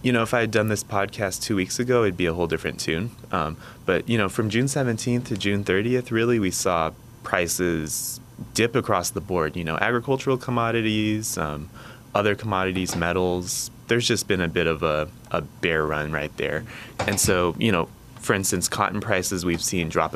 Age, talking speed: 20-39, 195 wpm